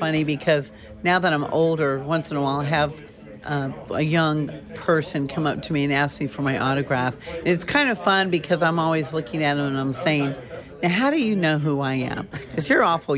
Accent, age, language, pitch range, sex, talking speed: American, 50-69, English, 140-185 Hz, female, 230 wpm